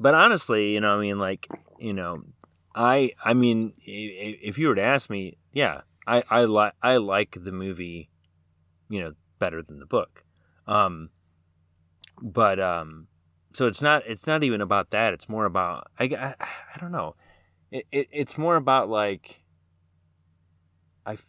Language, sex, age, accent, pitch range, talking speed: English, male, 30-49, American, 85-115 Hz, 165 wpm